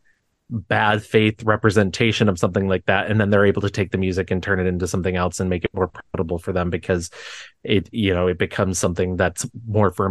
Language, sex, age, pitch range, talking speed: English, male, 30-49, 100-120 Hz, 230 wpm